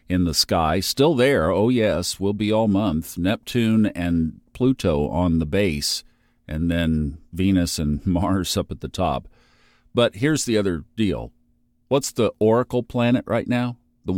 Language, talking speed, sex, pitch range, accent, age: English, 160 wpm, male, 90-120 Hz, American, 50-69